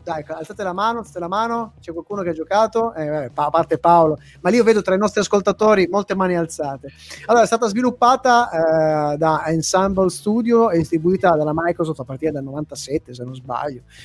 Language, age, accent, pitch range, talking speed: Italian, 30-49, native, 155-230 Hz, 200 wpm